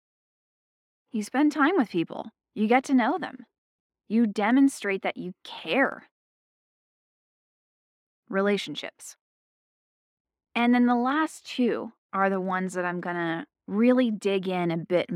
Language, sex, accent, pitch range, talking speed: English, female, American, 170-235 Hz, 130 wpm